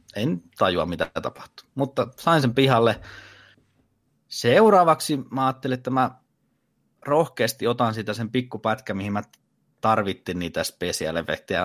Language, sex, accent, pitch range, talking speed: Finnish, male, native, 100-130 Hz, 120 wpm